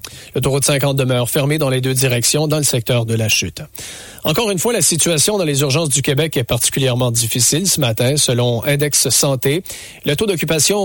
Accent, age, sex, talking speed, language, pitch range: Canadian, 40-59, male, 205 wpm, English, 125-155 Hz